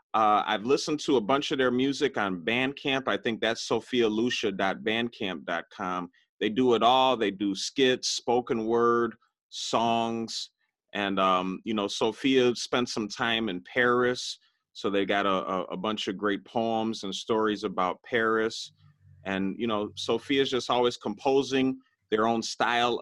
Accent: American